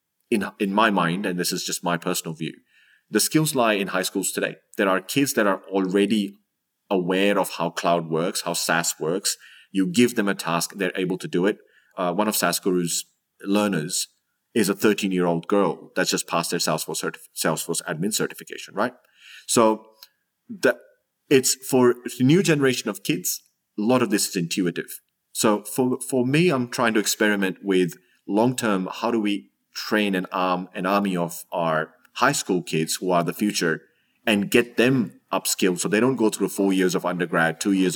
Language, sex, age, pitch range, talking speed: English, male, 30-49, 90-110 Hz, 190 wpm